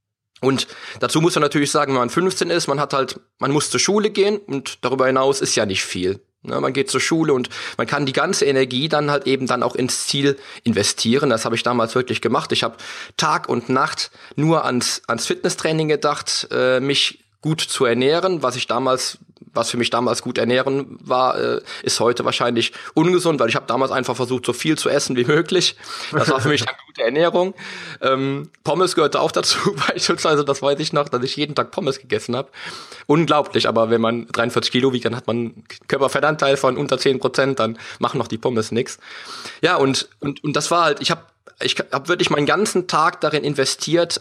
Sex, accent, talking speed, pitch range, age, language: male, German, 210 wpm, 120-150 Hz, 20-39, German